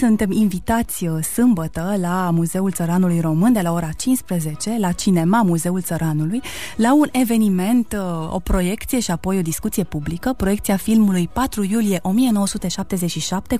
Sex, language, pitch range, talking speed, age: female, Romanian, 175-225 Hz, 130 wpm, 20-39